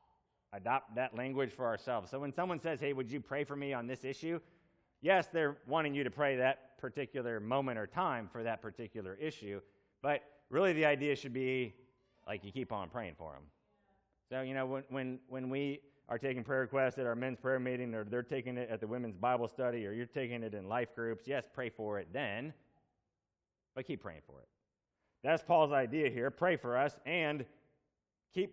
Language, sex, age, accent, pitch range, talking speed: English, male, 30-49, American, 115-145 Hz, 200 wpm